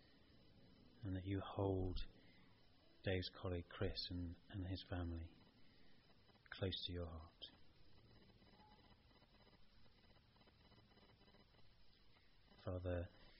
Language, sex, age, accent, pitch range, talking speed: English, male, 30-49, British, 90-100 Hz, 70 wpm